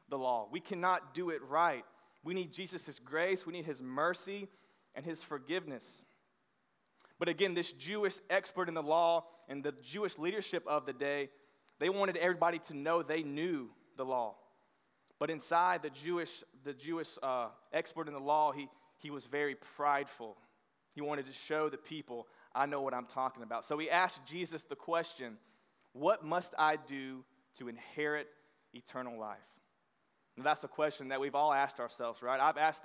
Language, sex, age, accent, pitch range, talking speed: English, male, 20-39, American, 140-170 Hz, 175 wpm